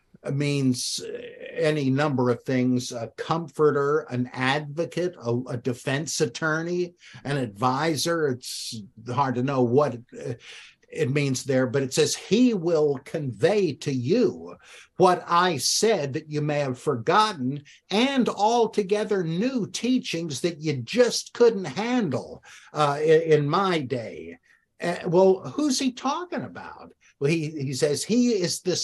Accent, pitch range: American, 130-190 Hz